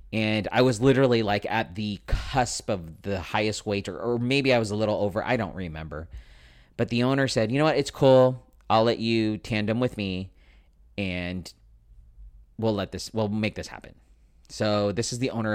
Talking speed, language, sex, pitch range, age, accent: 195 wpm, English, male, 90-115 Hz, 30-49, American